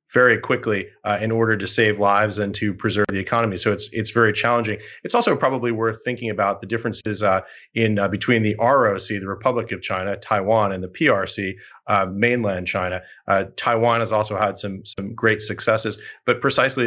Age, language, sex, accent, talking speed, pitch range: 30-49, English, male, American, 190 wpm, 100-115 Hz